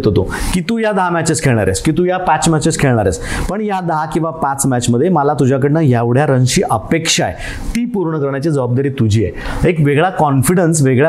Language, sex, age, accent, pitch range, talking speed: Marathi, male, 30-49, native, 125-160 Hz, 95 wpm